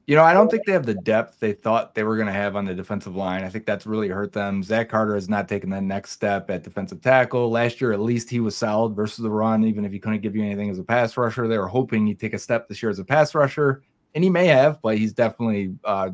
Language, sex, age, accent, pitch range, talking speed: English, male, 30-49, American, 105-130 Hz, 295 wpm